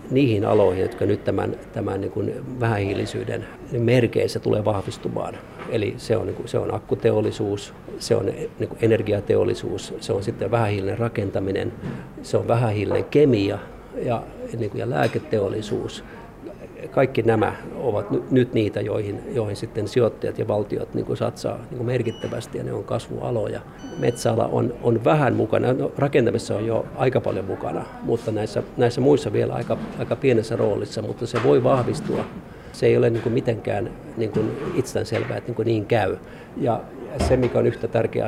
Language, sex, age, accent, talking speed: Finnish, male, 50-69, native, 135 wpm